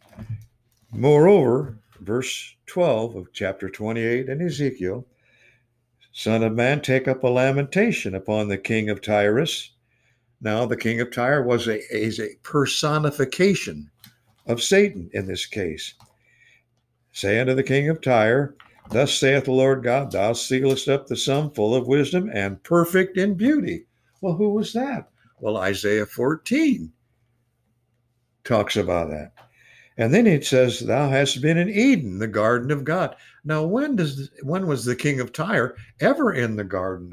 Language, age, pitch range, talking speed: English, 60-79, 110-140 Hz, 150 wpm